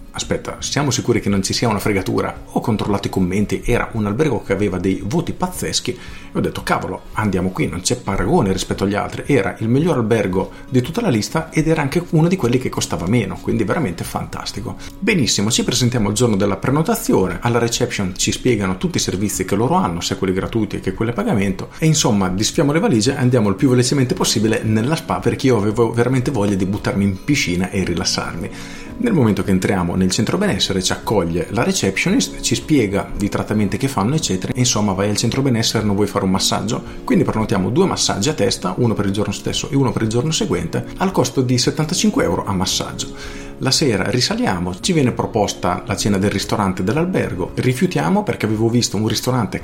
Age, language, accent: 40-59, Italian, native